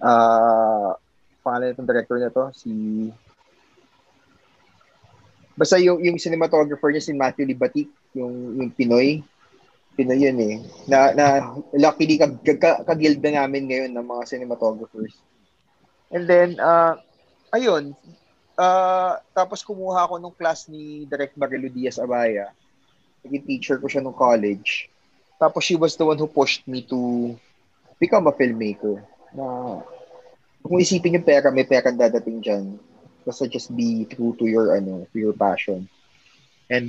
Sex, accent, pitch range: male, native, 115-160 Hz